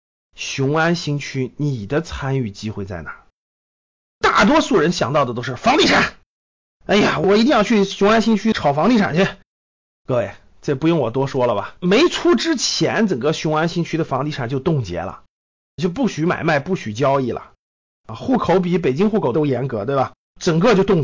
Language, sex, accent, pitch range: Chinese, male, native, 135-210 Hz